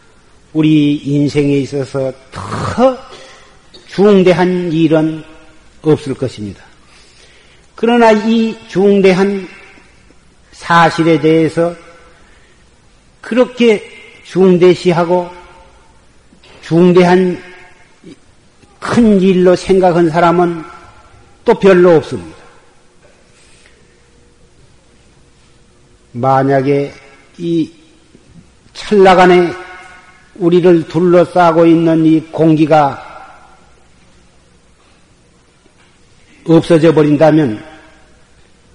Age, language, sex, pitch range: 50-69, Korean, male, 135-180 Hz